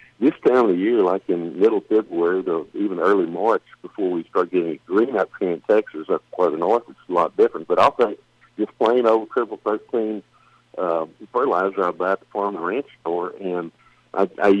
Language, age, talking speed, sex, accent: English, 60-79, 205 wpm, male, American